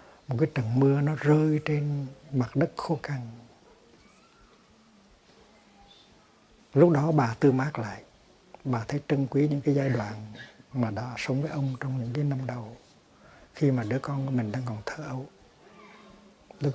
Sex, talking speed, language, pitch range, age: male, 165 wpm, Vietnamese, 120-145 Hz, 60-79